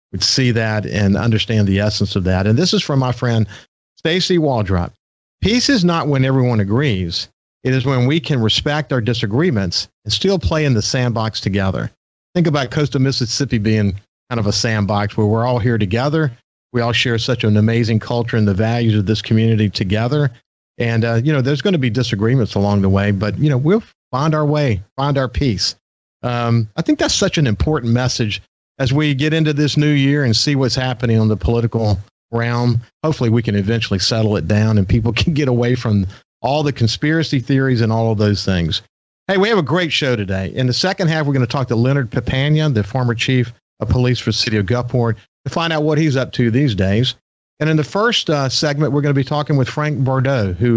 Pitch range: 110-140 Hz